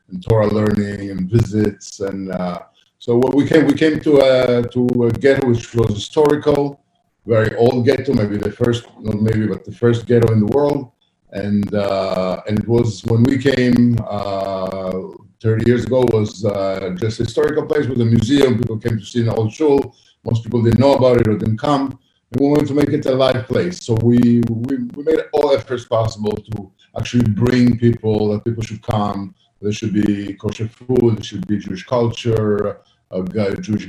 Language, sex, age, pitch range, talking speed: English, male, 50-69, 105-130 Hz, 195 wpm